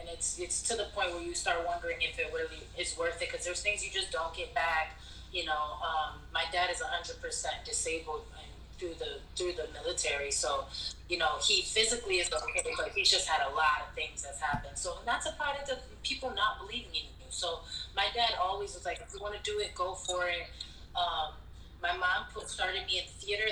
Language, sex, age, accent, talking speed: English, female, 20-39, American, 230 wpm